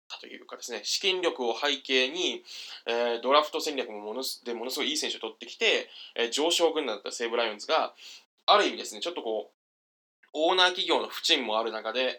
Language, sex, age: Japanese, male, 20-39